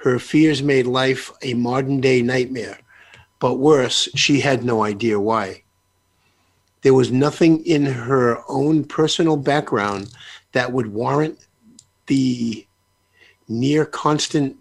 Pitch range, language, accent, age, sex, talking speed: 115-145 Hz, English, American, 50-69, male, 120 wpm